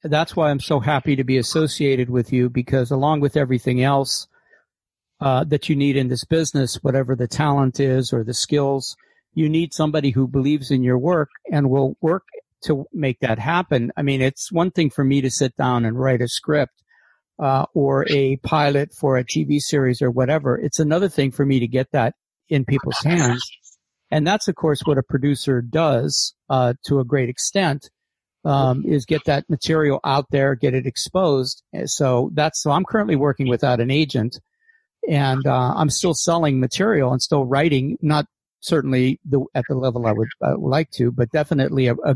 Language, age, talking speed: English, 50-69, 190 wpm